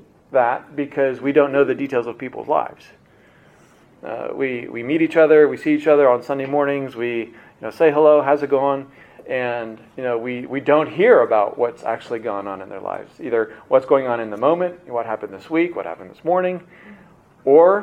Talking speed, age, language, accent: 210 wpm, 40-59, English, American